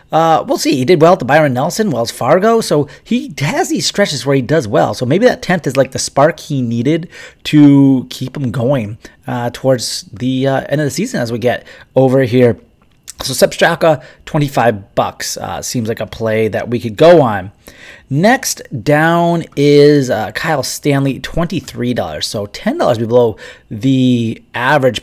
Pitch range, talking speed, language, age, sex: 115-155 Hz, 185 wpm, English, 30-49, male